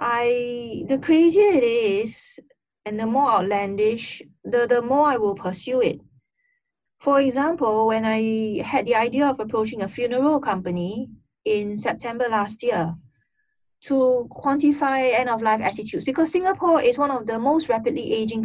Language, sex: English, female